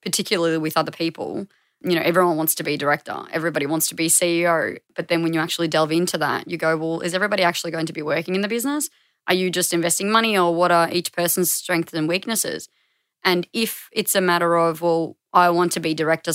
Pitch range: 165-190 Hz